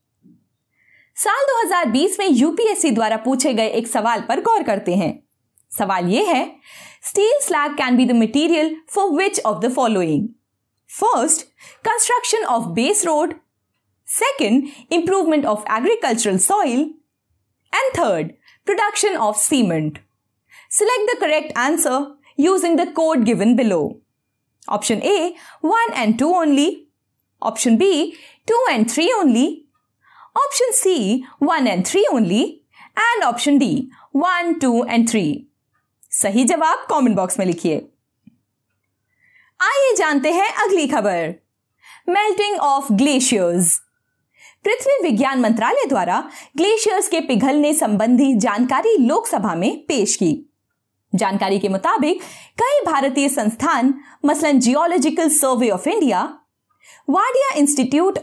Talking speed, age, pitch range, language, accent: 120 wpm, 20-39, 240-365 Hz, Hindi, native